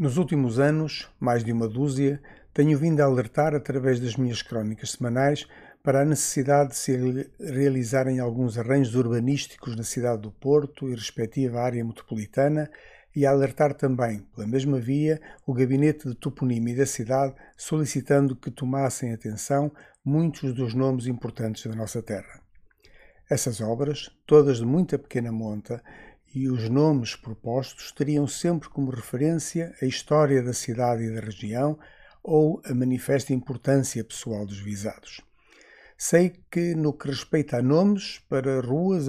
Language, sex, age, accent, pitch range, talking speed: Portuguese, male, 50-69, Brazilian, 120-145 Hz, 145 wpm